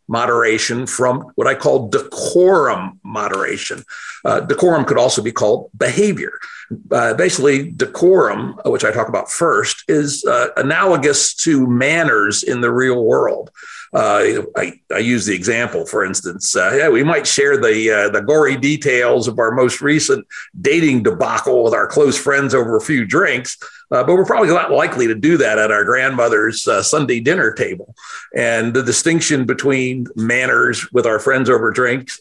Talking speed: 170 wpm